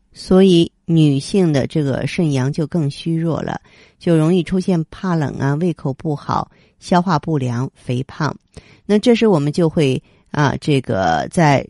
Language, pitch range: Chinese, 130-165 Hz